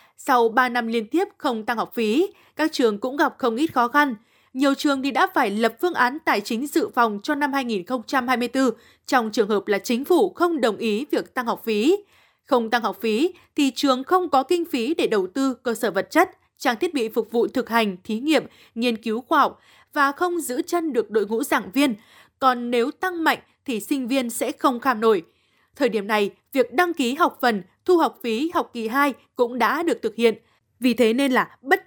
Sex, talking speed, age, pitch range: female, 225 wpm, 20-39, 230-300 Hz